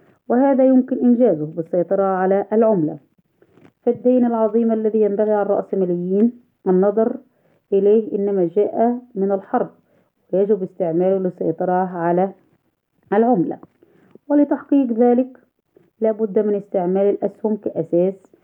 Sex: female